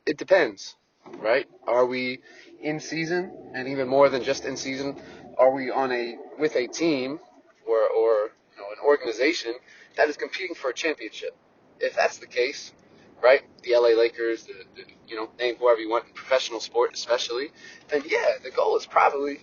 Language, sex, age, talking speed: English, male, 30-49, 175 wpm